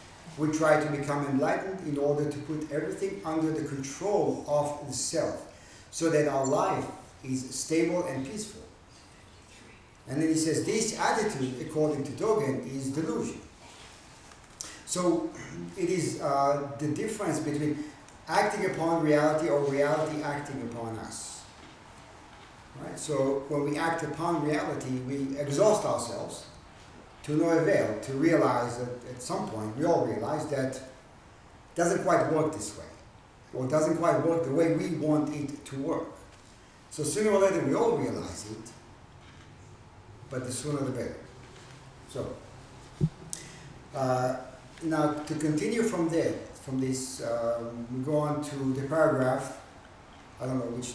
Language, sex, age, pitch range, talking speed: English, male, 50-69, 130-160 Hz, 145 wpm